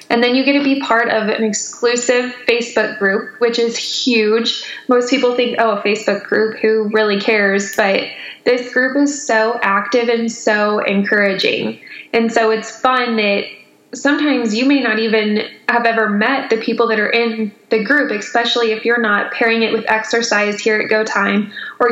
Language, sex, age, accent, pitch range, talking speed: English, female, 10-29, American, 210-240 Hz, 180 wpm